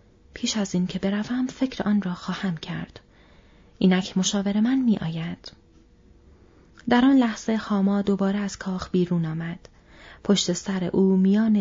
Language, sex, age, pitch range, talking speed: Persian, female, 30-49, 175-220 Hz, 140 wpm